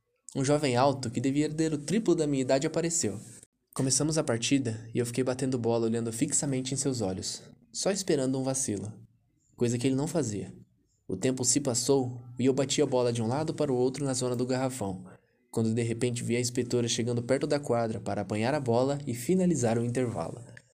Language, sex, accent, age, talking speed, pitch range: Portuguese, male, Brazilian, 10-29, 205 wpm, 115-135 Hz